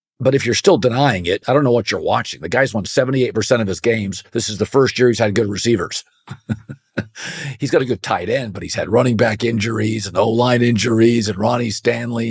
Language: English